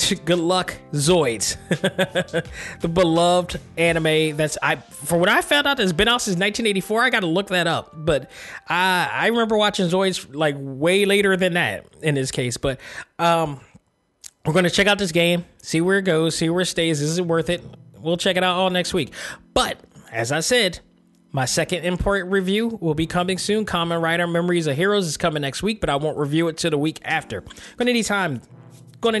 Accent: American